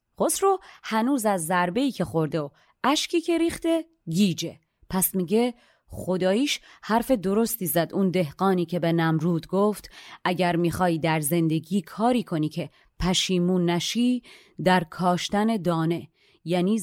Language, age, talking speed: Persian, 30-49, 130 wpm